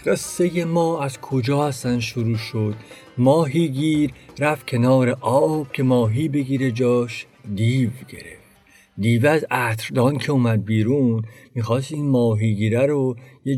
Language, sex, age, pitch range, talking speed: Persian, male, 50-69, 115-155 Hz, 125 wpm